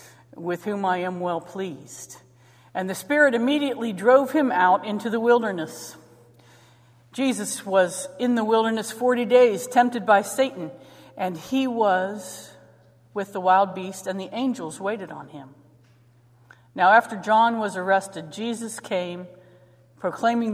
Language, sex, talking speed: English, female, 135 wpm